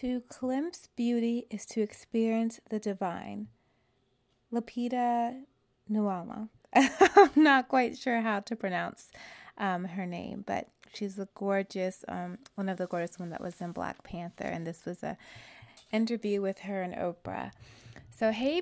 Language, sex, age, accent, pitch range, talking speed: English, female, 20-39, American, 190-235 Hz, 150 wpm